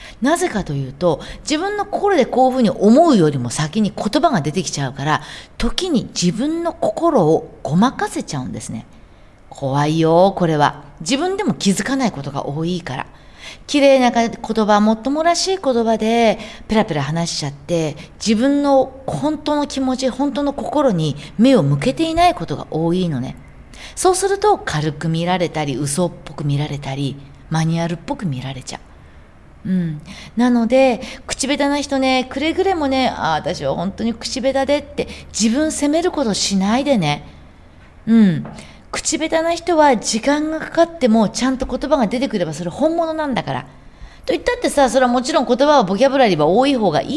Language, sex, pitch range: Japanese, female, 165-275 Hz